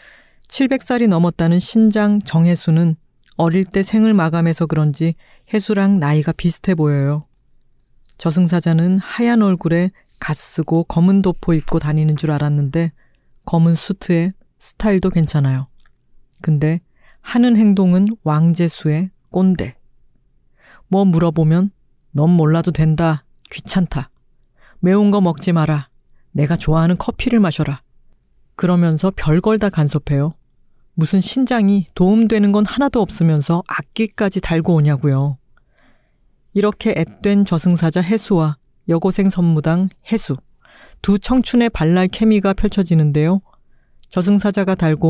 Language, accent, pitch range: Korean, native, 155-200 Hz